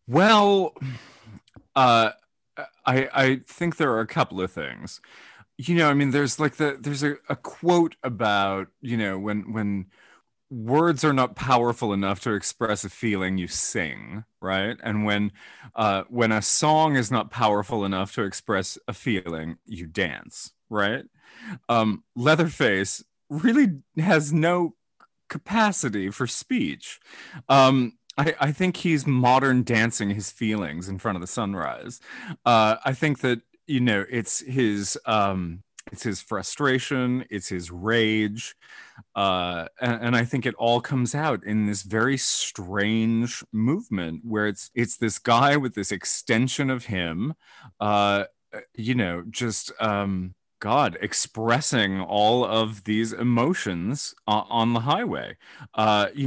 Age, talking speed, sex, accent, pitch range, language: 30-49, 140 wpm, male, American, 105-135 Hz, English